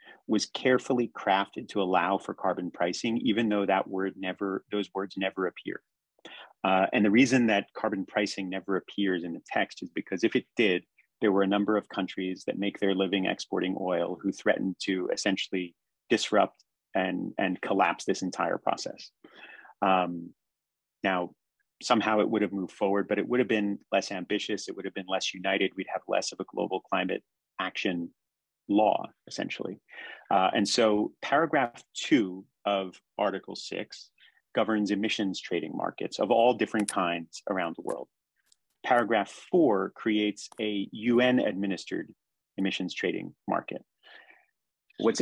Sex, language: male, English